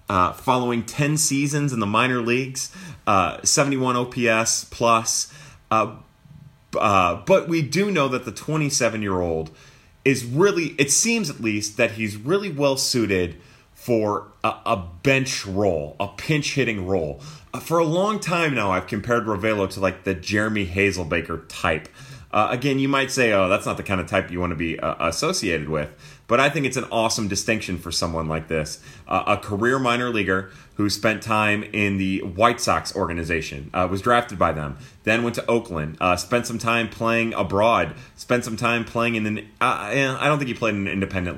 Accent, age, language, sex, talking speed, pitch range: American, 30-49, English, male, 185 wpm, 95-125 Hz